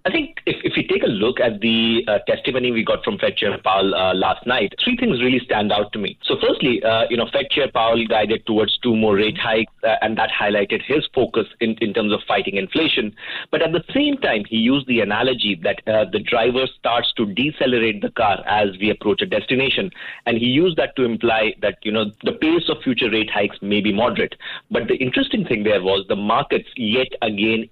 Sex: male